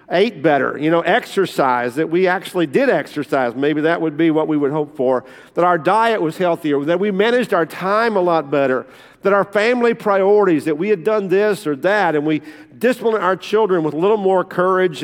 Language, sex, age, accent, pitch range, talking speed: English, male, 50-69, American, 155-205 Hz, 210 wpm